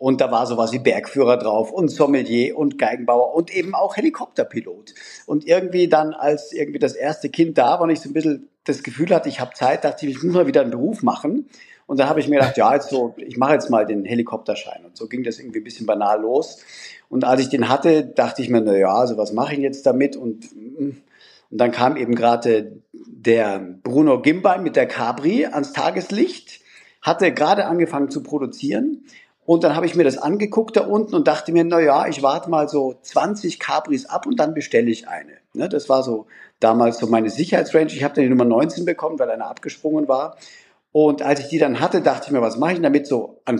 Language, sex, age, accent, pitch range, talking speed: German, male, 50-69, German, 120-170 Hz, 225 wpm